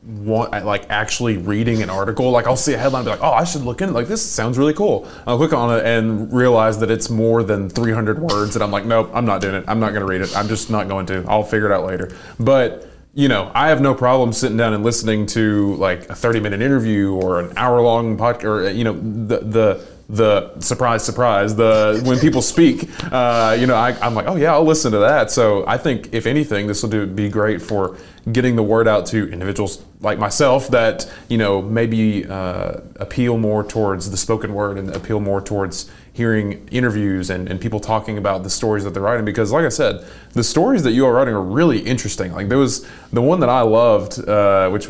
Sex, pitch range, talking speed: male, 100-120 Hz, 235 wpm